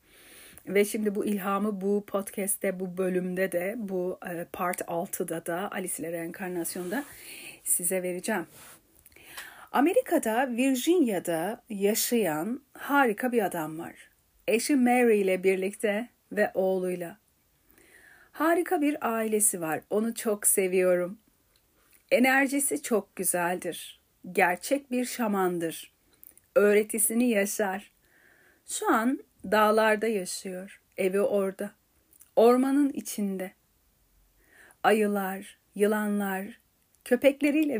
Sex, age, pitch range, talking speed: female, 40-59, 185-245 Hz, 90 wpm